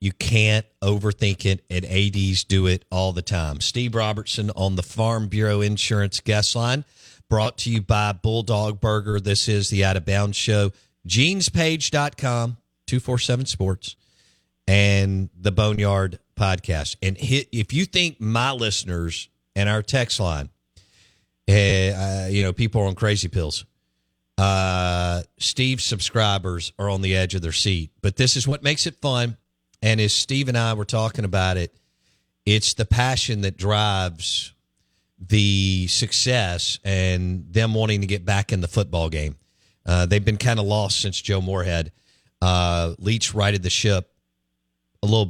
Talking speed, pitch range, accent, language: 155 wpm, 90-115 Hz, American, English